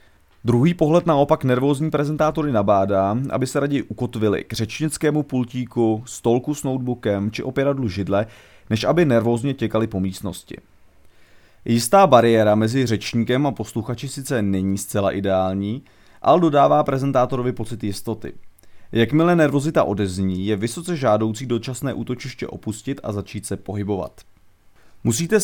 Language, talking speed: Czech, 125 wpm